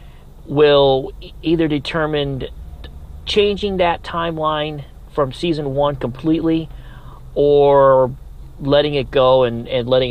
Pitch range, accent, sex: 125-150 Hz, American, male